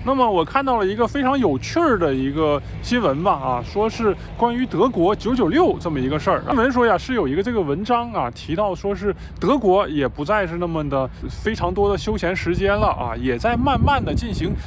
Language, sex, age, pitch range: Chinese, male, 20-39, 170-250 Hz